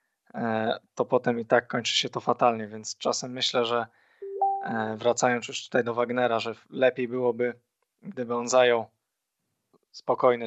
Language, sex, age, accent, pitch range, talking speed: Polish, male, 20-39, native, 120-135 Hz, 140 wpm